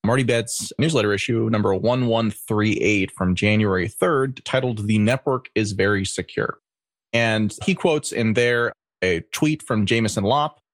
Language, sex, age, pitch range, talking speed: English, male, 30-49, 100-125 Hz, 140 wpm